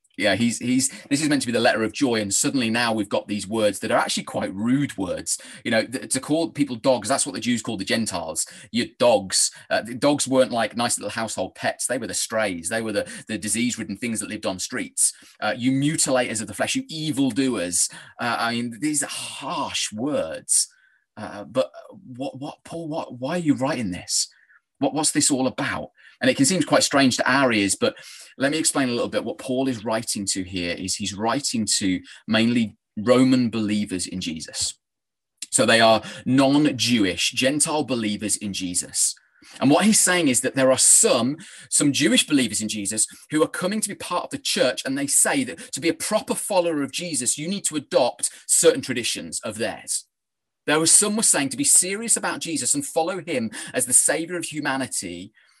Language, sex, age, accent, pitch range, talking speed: English, male, 30-49, British, 110-165 Hz, 210 wpm